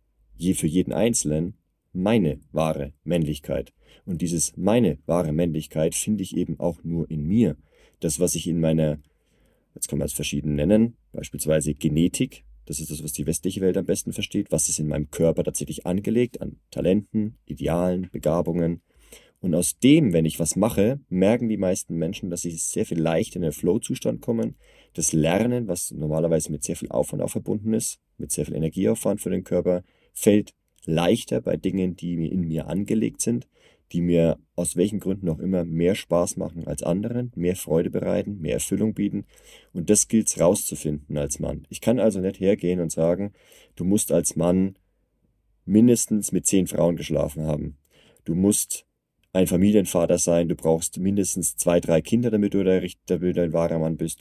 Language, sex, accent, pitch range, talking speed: German, male, German, 80-95 Hz, 180 wpm